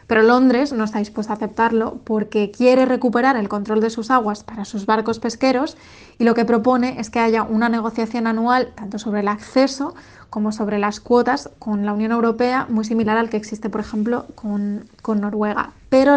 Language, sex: Spanish, female